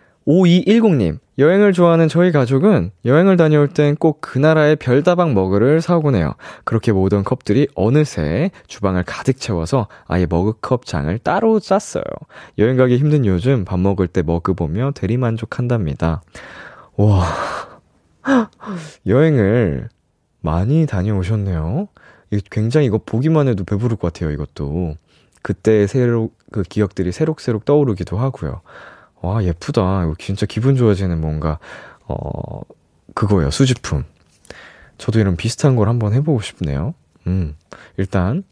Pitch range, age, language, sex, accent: 95-160 Hz, 20-39, Korean, male, native